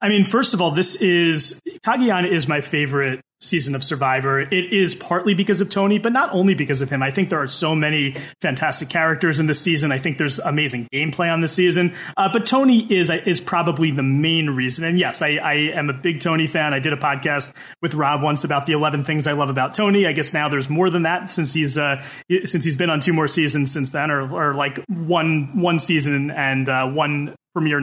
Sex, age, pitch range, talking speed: male, 30-49, 145-185 Hz, 230 wpm